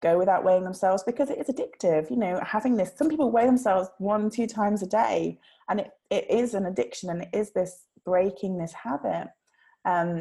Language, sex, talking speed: English, female, 205 wpm